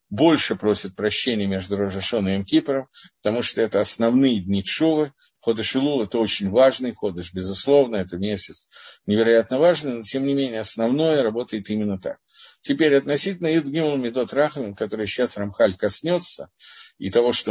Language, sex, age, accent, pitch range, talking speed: Russian, male, 50-69, native, 100-140 Hz, 155 wpm